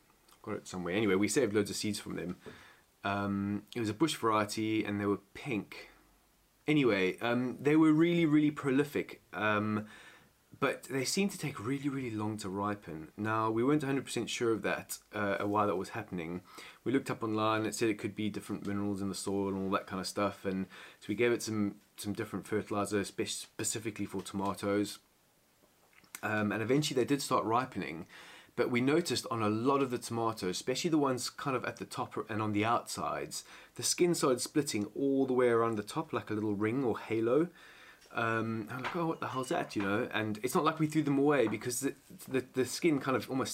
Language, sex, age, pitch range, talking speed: English, male, 20-39, 105-135 Hz, 210 wpm